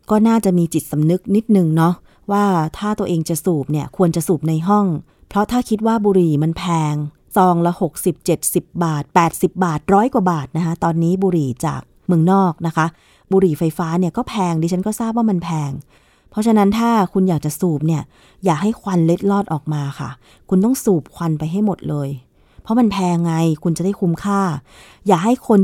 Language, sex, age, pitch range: Thai, female, 20-39, 160-205 Hz